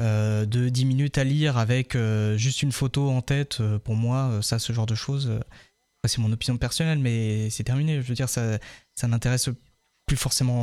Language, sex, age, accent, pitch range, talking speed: French, male, 20-39, French, 115-145 Hz, 215 wpm